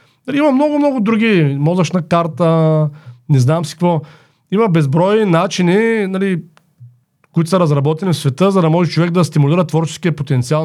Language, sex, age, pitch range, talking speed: Bulgarian, male, 40-59, 145-185 Hz, 145 wpm